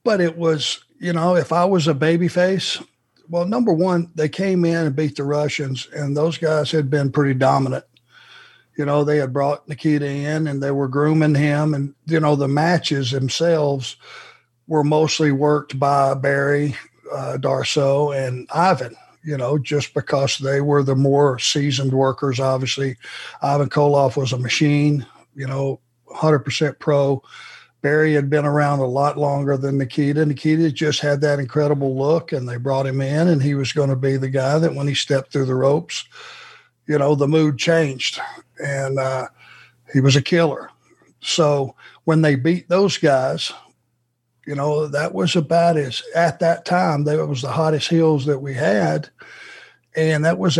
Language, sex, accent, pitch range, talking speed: English, male, American, 140-160 Hz, 175 wpm